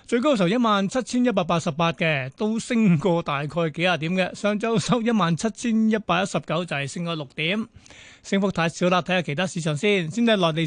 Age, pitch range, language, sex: 30-49, 165-205 Hz, Chinese, male